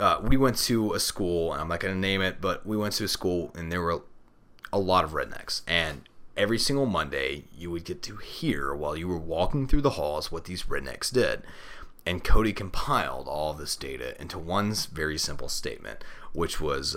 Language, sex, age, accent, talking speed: English, male, 30-49, American, 210 wpm